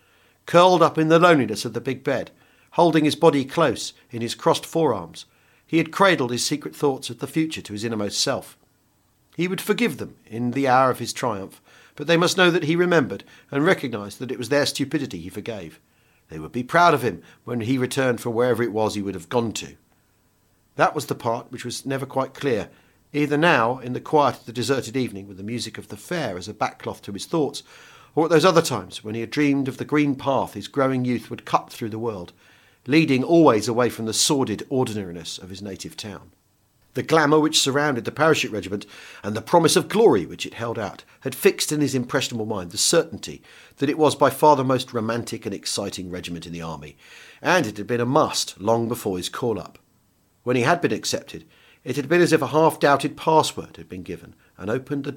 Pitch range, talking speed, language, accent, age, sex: 105-150 Hz, 220 wpm, English, British, 50-69, male